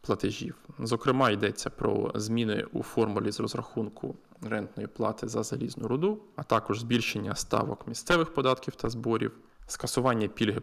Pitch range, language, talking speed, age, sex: 110-140 Hz, Ukrainian, 135 wpm, 20-39, male